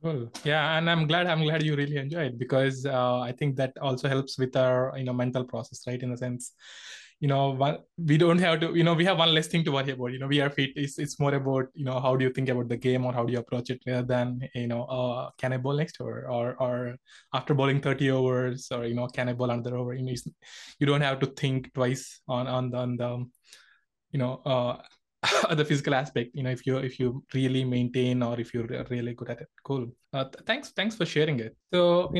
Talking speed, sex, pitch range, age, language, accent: 250 wpm, male, 125-150 Hz, 20-39, English, Indian